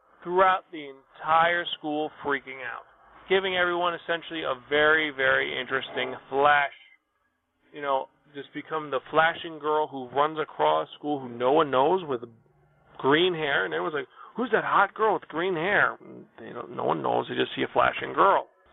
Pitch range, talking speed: 140-200 Hz, 165 wpm